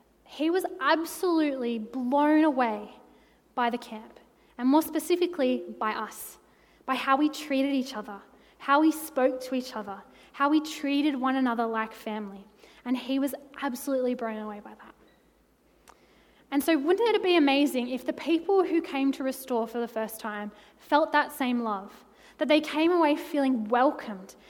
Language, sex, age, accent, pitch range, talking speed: English, female, 10-29, Australian, 240-295 Hz, 165 wpm